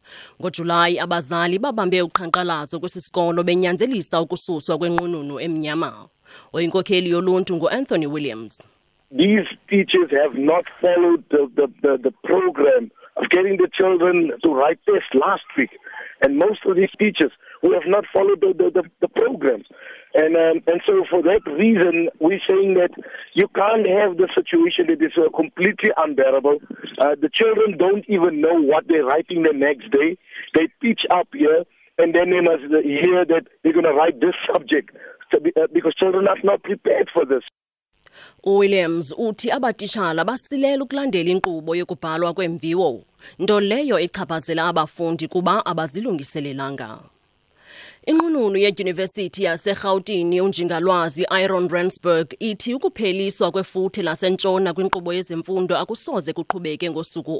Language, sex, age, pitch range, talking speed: English, male, 50-69, 165-205 Hz, 140 wpm